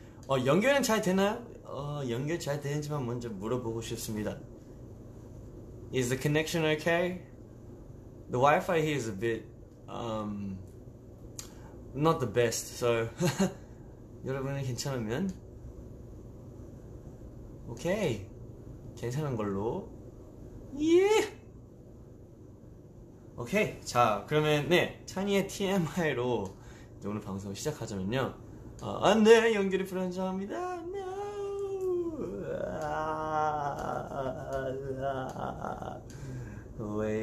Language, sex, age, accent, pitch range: Korean, male, 20-39, native, 115-150 Hz